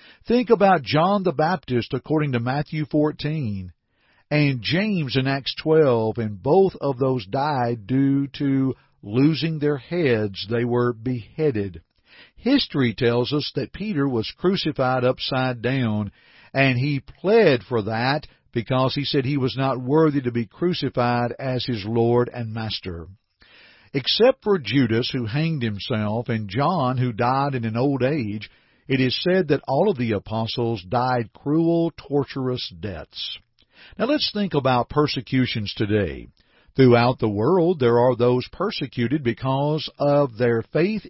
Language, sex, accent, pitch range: English, male, American, 120-160 Hz